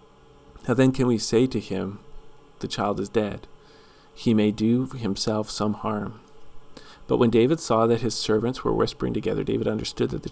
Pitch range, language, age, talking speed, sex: 100-120 Hz, English, 40-59, 180 wpm, male